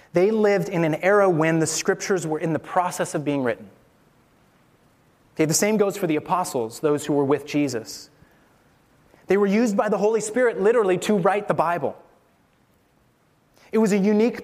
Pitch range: 150-195 Hz